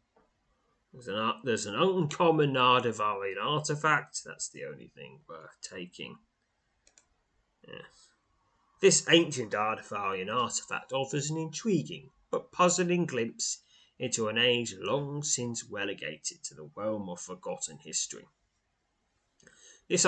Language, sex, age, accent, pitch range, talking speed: English, male, 30-49, British, 115-165 Hz, 105 wpm